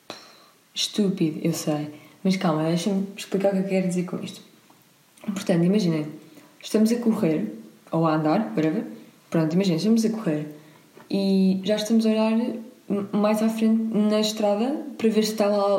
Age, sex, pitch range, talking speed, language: 20-39, female, 175-210 Hz, 160 wpm, Portuguese